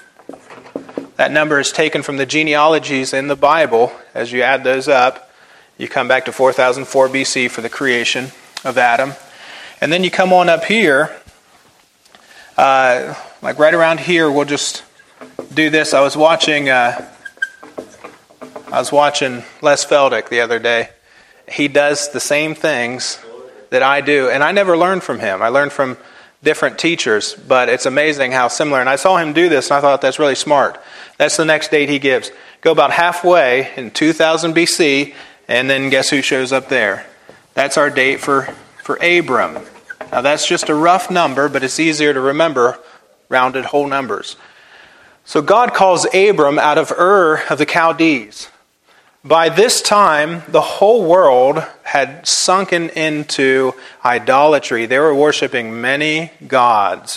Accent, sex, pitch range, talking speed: American, male, 135-165 Hz, 160 wpm